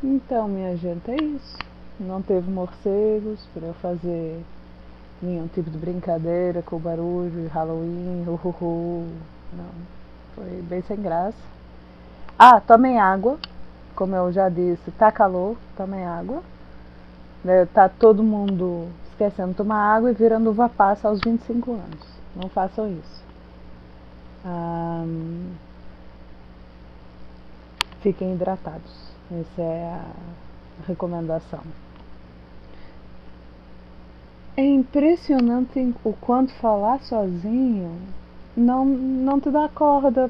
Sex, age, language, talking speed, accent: female, 20-39, Portuguese, 105 wpm, Brazilian